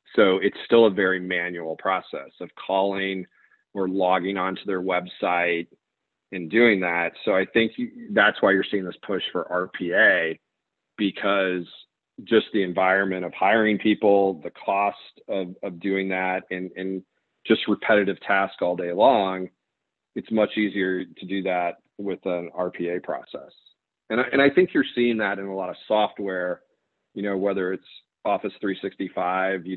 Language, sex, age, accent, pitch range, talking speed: English, male, 40-59, American, 90-105 Hz, 155 wpm